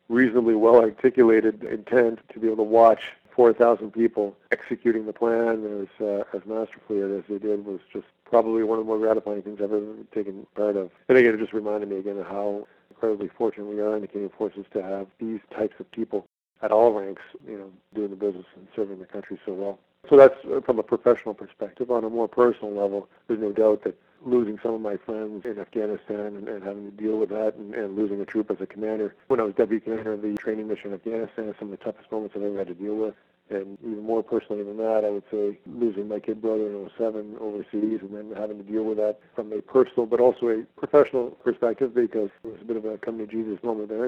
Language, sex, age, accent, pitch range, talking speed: English, male, 50-69, American, 105-115 Hz, 235 wpm